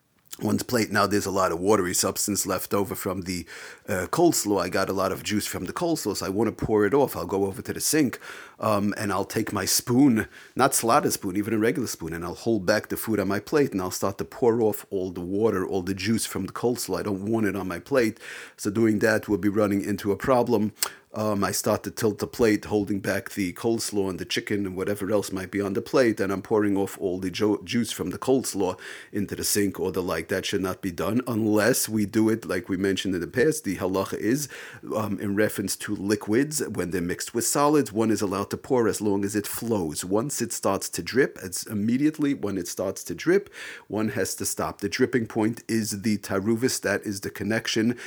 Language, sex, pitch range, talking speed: English, male, 100-115 Hz, 240 wpm